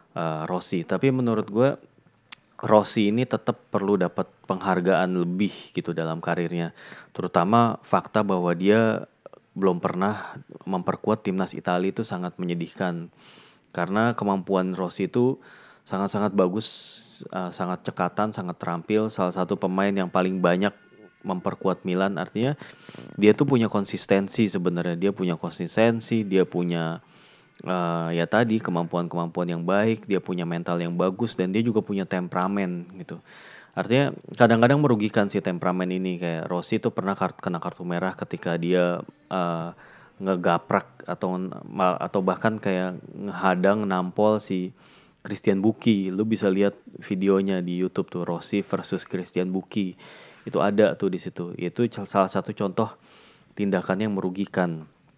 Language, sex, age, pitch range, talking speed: Indonesian, male, 20-39, 90-105 Hz, 130 wpm